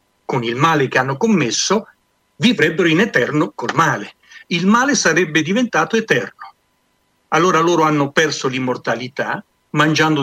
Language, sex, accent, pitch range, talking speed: Italian, male, native, 130-160 Hz, 130 wpm